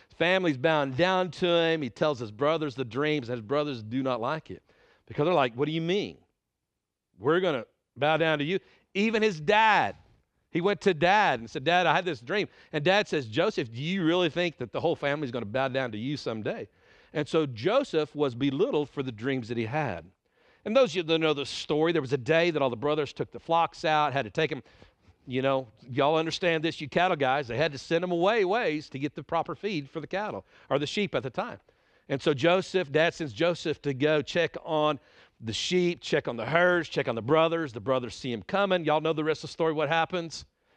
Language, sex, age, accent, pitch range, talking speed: English, male, 50-69, American, 135-170 Hz, 240 wpm